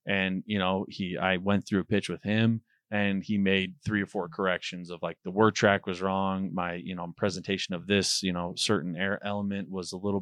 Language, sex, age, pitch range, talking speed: English, male, 20-39, 95-105 Hz, 230 wpm